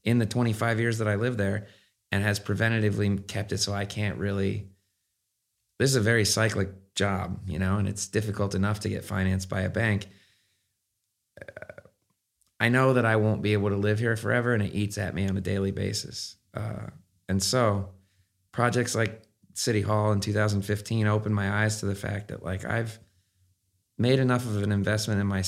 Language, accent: English, American